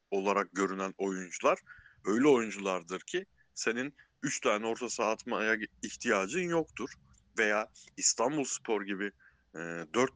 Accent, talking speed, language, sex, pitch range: native, 105 wpm, Turkish, male, 100-130 Hz